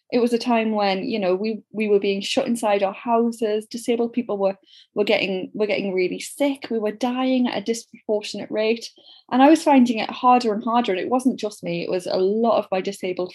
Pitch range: 195-245 Hz